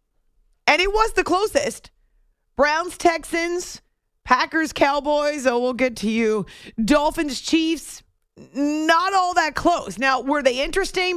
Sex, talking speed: female, 130 wpm